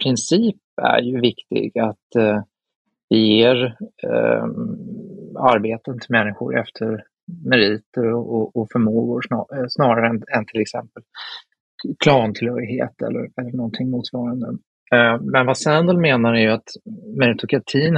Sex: male